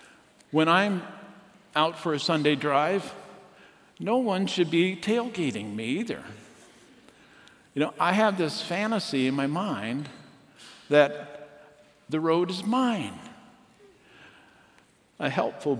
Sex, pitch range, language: male, 115-170 Hz, English